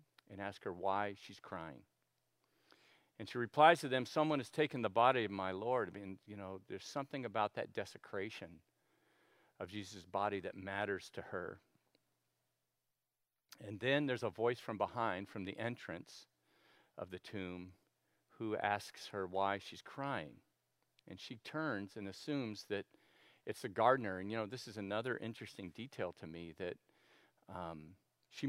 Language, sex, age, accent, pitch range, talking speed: English, male, 50-69, American, 95-120 Hz, 160 wpm